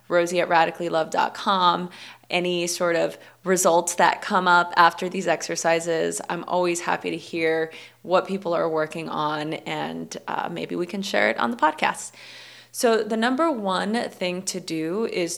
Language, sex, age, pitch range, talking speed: English, female, 20-39, 165-190 Hz, 150 wpm